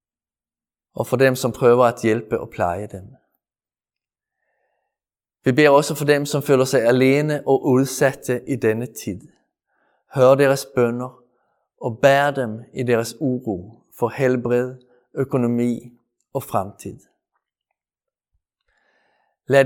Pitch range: 115-130 Hz